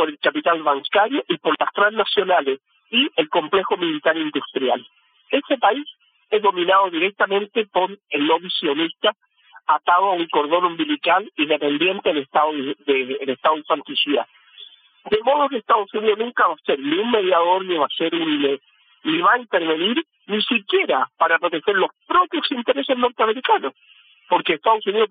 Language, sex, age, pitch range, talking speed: Spanish, male, 50-69, 145-215 Hz, 155 wpm